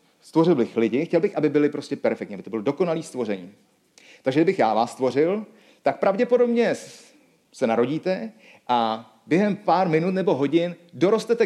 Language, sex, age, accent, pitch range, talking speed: Czech, male, 40-59, native, 150-210 Hz, 155 wpm